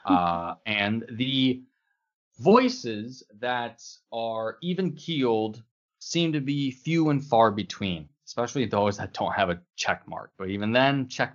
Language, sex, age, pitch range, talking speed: English, male, 20-39, 90-125 Hz, 145 wpm